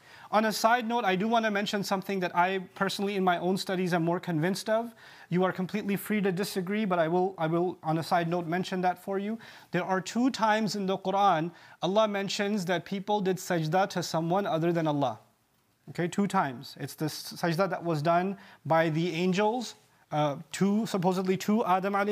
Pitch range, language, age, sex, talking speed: 170-200 Hz, English, 30-49, male, 200 wpm